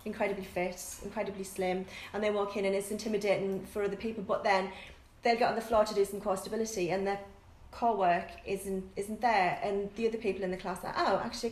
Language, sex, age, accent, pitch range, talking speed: English, female, 30-49, British, 185-210 Hz, 225 wpm